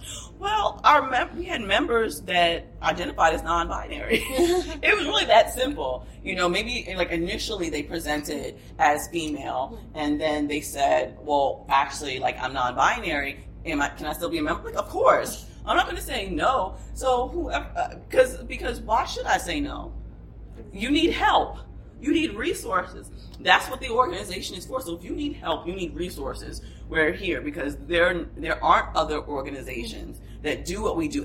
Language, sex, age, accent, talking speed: English, female, 30-49, American, 180 wpm